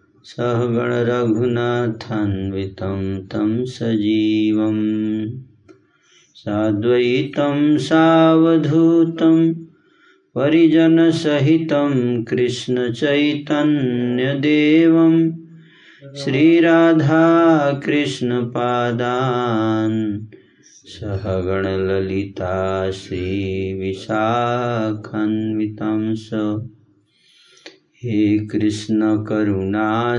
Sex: male